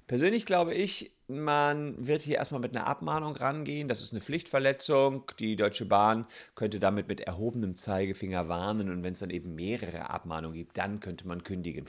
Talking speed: 180 wpm